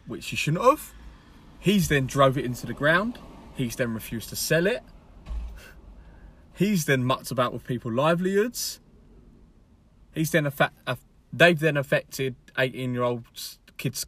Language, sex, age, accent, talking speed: English, male, 20-39, British, 150 wpm